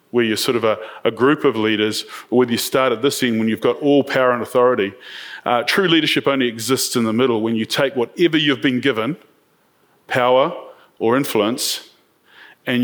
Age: 30-49